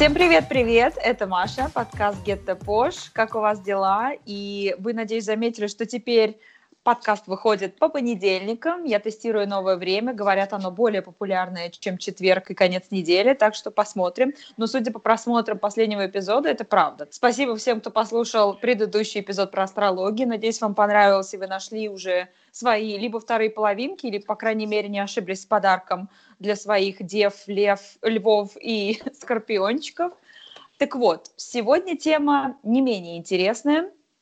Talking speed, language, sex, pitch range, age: 150 wpm, Russian, female, 200-245 Hz, 20-39